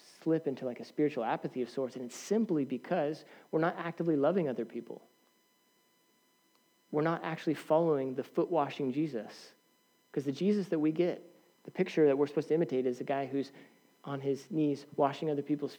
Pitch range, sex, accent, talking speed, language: 130-160 Hz, male, American, 180 wpm, English